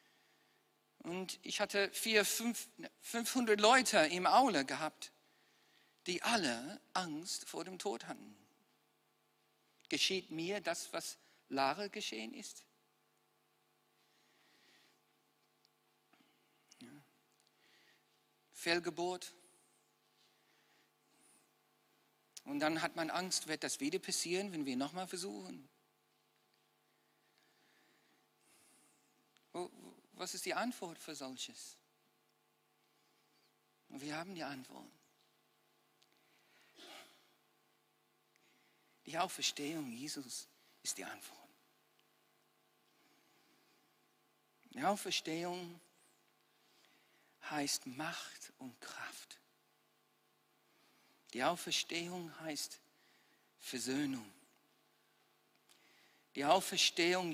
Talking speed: 75 wpm